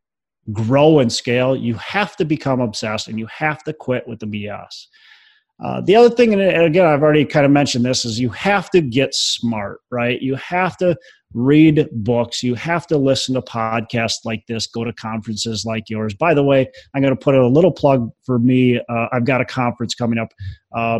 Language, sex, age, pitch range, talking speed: English, male, 30-49, 115-165 Hz, 210 wpm